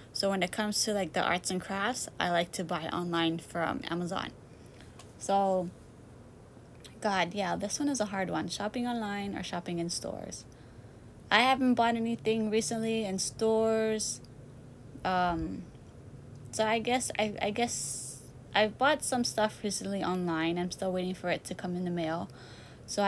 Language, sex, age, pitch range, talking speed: English, female, 20-39, 170-205 Hz, 165 wpm